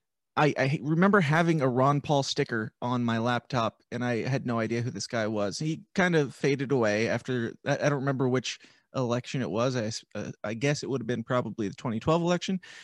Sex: male